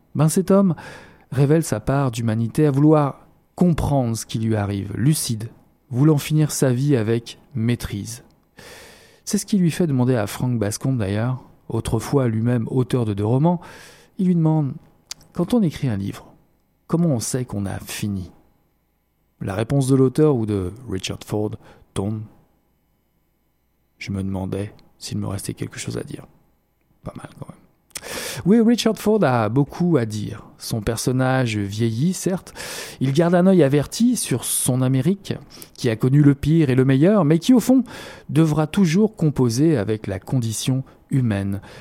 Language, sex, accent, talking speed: French, male, French, 160 wpm